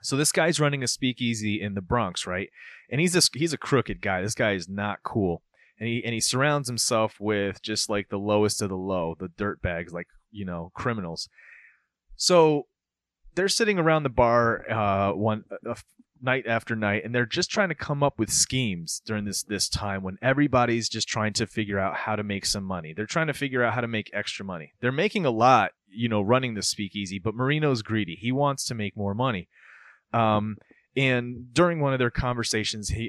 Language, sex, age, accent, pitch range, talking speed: English, male, 30-49, American, 100-130 Hz, 210 wpm